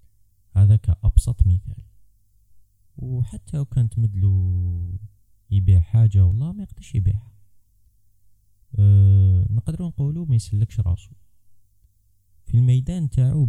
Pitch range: 95-110 Hz